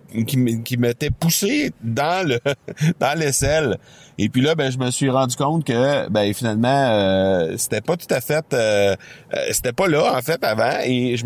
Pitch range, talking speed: 100-125 Hz, 190 wpm